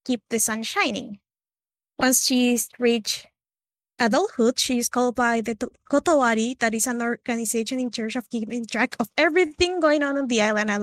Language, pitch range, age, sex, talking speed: English, 225-275 Hz, 20-39, female, 175 wpm